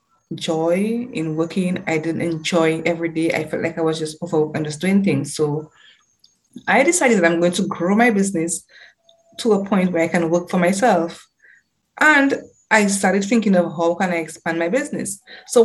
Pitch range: 165-205 Hz